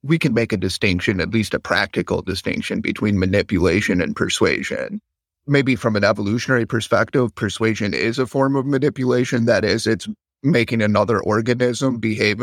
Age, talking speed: 30-49, 155 wpm